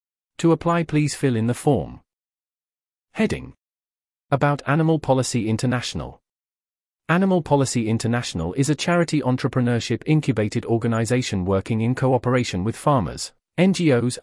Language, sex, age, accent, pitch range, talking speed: English, male, 30-49, British, 105-140 Hz, 115 wpm